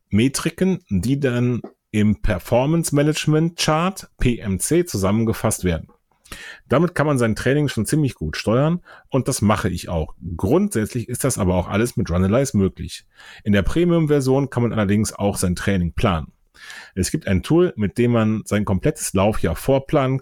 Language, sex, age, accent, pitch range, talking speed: German, male, 40-59, German, 100-140 Hz, 155 wpm